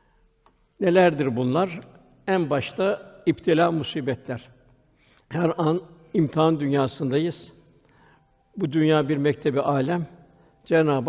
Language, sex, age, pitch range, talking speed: Turkish, male, 60-79, 140-170 Hz, 85 wpm